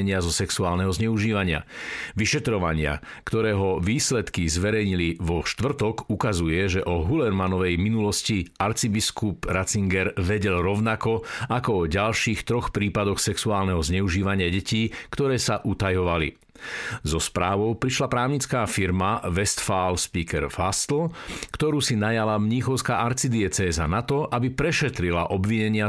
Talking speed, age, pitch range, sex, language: 115 wpm, 50-69, 95-115 Hz, male, Slovak